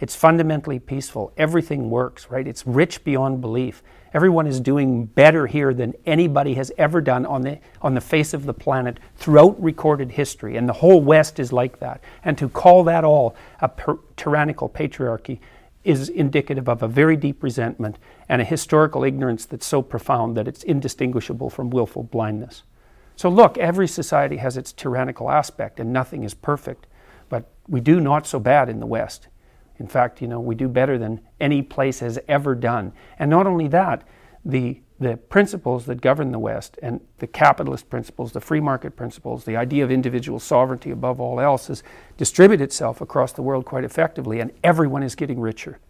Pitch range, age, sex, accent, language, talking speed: 125-155 Hz, 50-69, male, American, English, 185 wpm